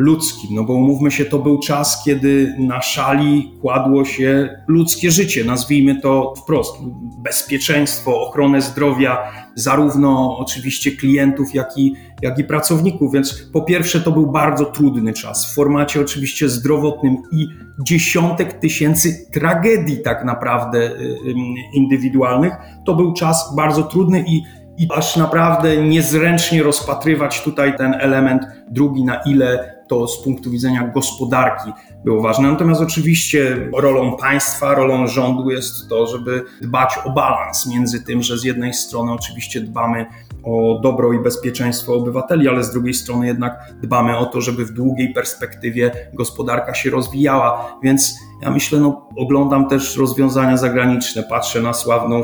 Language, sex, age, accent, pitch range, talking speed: Polish, male, 40-59, native, 120-145 Hz, 140 wpm